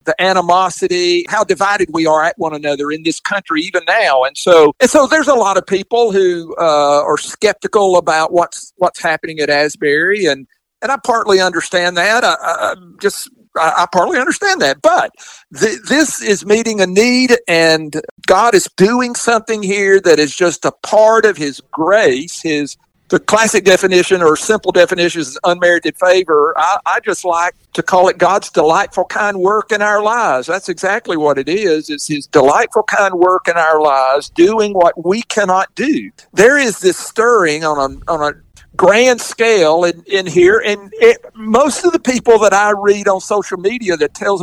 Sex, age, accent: male, 50-69, American